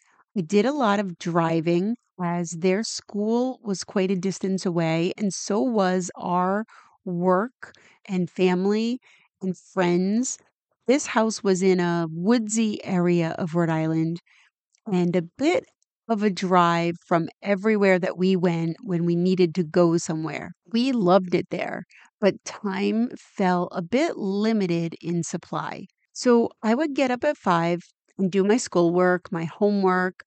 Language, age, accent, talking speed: English, 30-49, American, 150 wpm